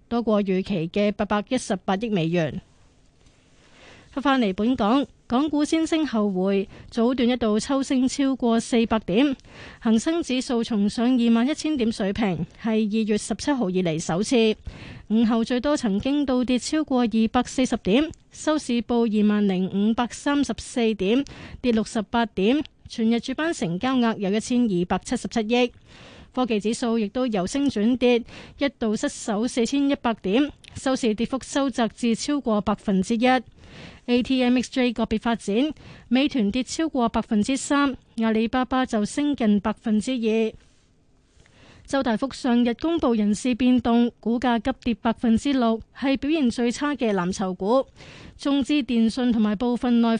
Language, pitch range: Chinese, 215-260 Hz